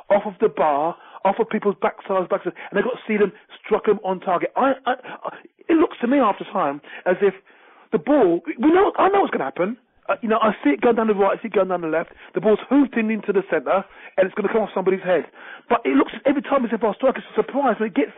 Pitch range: 190-245 Hz